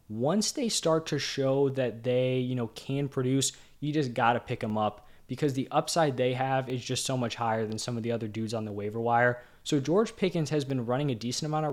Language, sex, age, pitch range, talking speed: English, male, 20-39, 130-155 Hz, 245 wpm